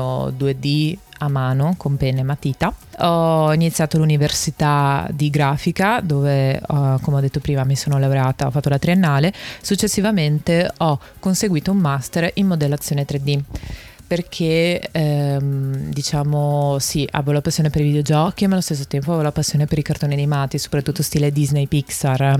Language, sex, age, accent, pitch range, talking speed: Italian, female, 20-39, native, 140-165 Hz, 155 wpm